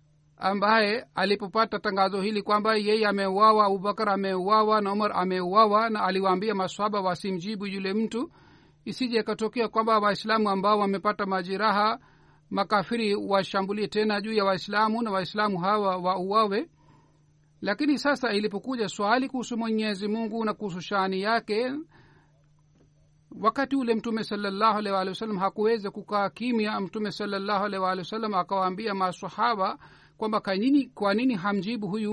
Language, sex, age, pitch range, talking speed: Swahili, male, 50-69, 190-220 Hz, 125 wpm